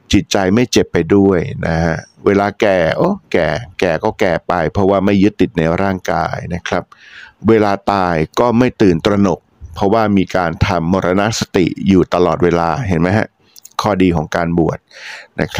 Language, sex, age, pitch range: Thai, male, 60-79, 85-105 Hz